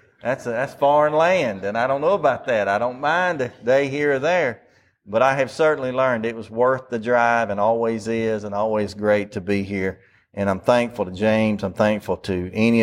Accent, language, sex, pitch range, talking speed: American, English, male, 110-140 Hz, 220 wpm